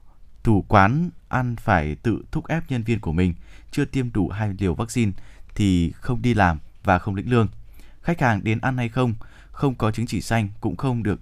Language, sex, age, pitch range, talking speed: Vietnamese, male, 20-39, 95-125 Hz, 210 wpm